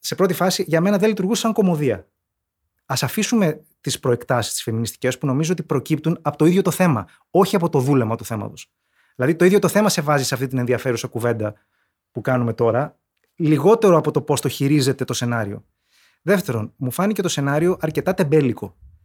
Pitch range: 125-190 Hz